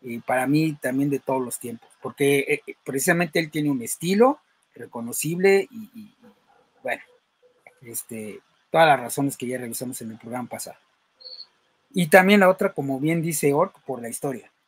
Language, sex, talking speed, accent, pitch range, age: Spanish, male, 170 wpm, Mexican, 130-165 Hz, 40-59